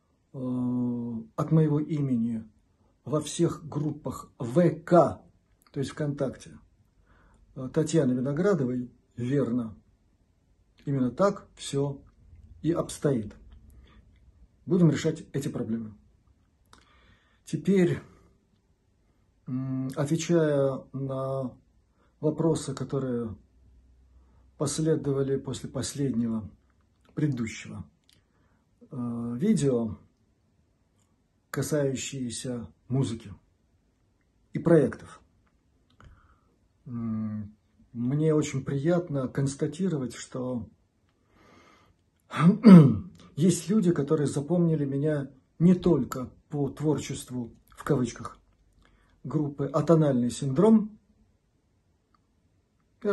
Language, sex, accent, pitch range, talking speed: Russian, male, native, 105-150 Hz, 65 wpm